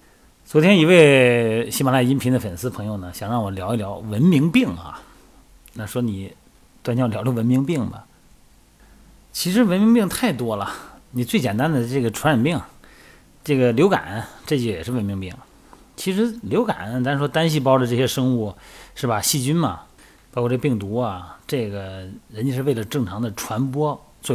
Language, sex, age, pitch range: Chinese, male, 30-49, 105-145 Hz